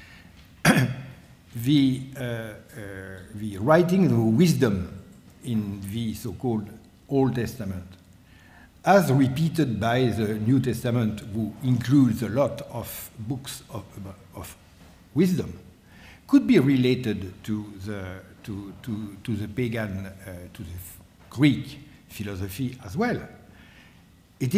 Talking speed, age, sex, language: 105 wpm, 60-79, male, English